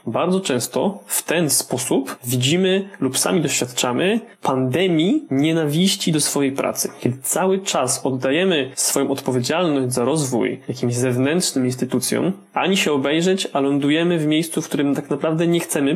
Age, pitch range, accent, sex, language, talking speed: 20-39, 135-165 Hz, native, male, Polish, 145 wpm